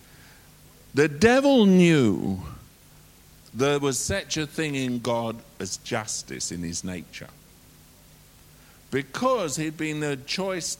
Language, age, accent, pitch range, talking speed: English, 50-69, British, 125-180 Hz, 110 wpm